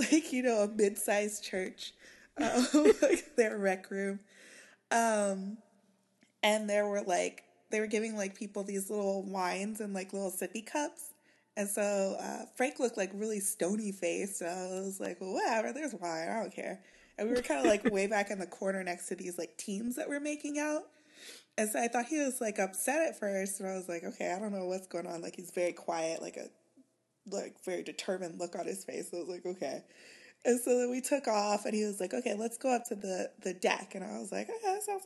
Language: English